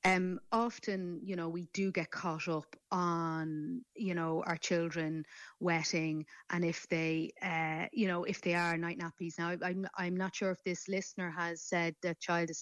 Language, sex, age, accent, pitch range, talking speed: English, female, 30-49, Irish, 160-190 Hz, 185 wpm